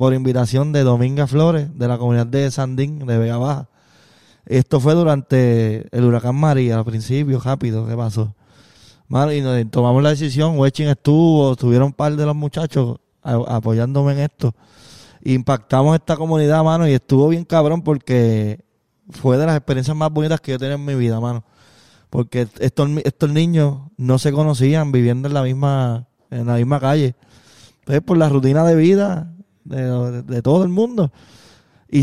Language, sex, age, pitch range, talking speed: Spanish, male, 20-39, 125-150 Hz, 170 wpm